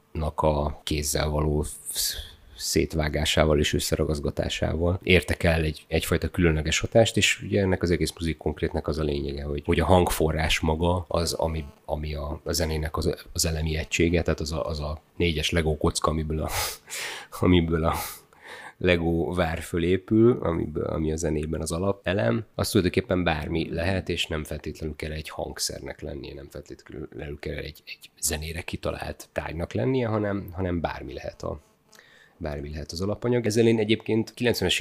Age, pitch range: 30-49, 80-90 Hz